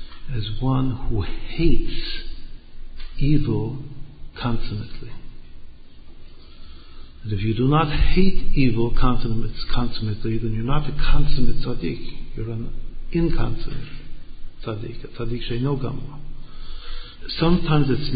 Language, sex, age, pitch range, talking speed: English, male, 50-69, 105-135 Hz, 95 wpm